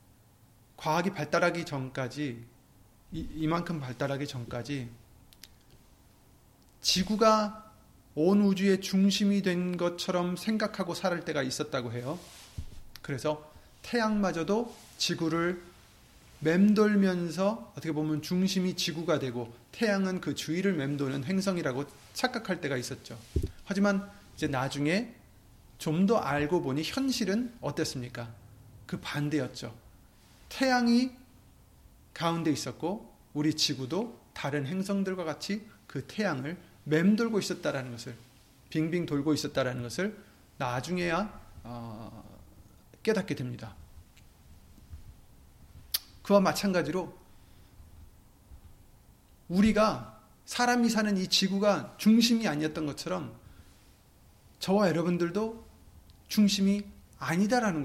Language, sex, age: Korean, male, 30-49